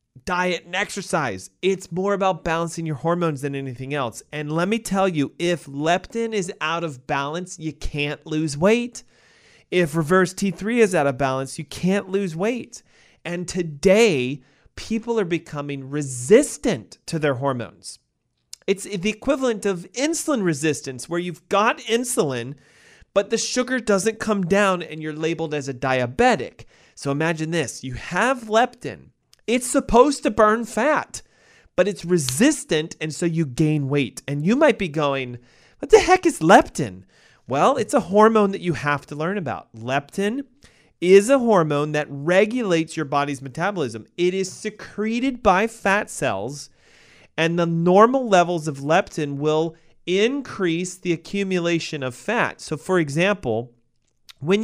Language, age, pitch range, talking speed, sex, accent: English, 30-49, 150-205 Hz, 155 wpm, male, American